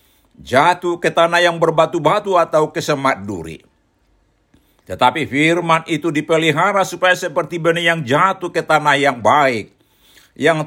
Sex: male